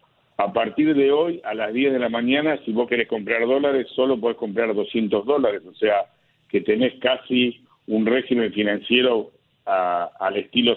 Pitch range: 115-140 Hz